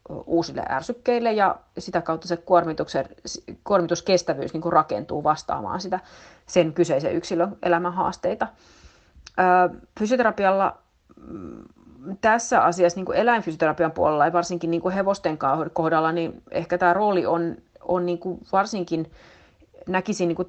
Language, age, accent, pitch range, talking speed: Finnish, 30-49, native, 160-190 Hz, 115 wpm